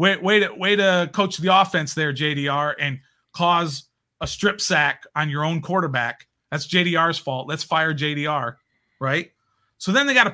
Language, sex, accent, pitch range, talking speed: English, male, American, 145-200 Hz, 170 wpm